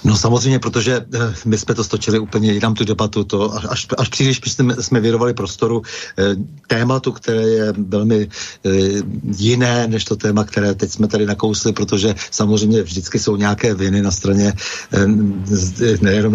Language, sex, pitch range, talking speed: Slovak, male, 105-120 Hz, 150 wpm